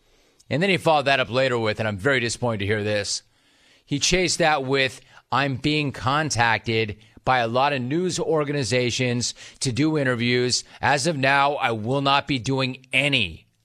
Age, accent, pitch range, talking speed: 30-49, American, 115-150 Hz, 175 wpm